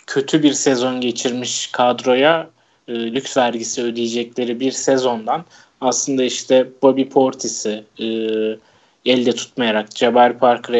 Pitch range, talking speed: 120-140 Hz, 110 wpm